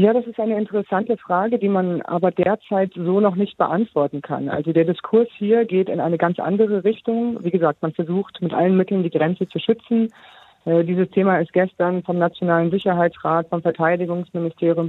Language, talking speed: German, 180 wpm